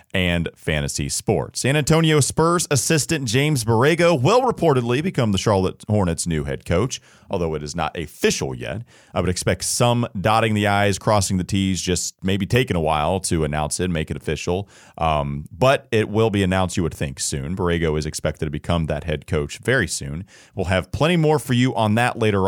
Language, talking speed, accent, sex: English, 200 wpm, American, male